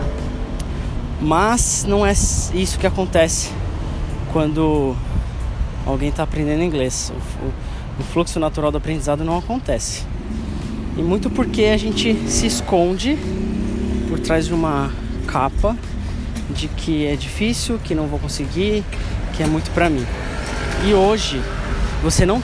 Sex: male